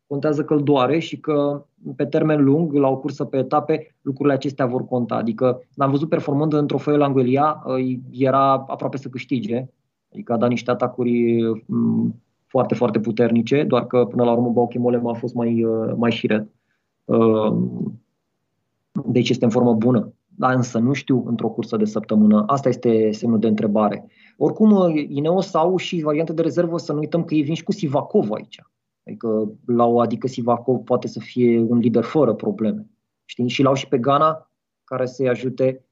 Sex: male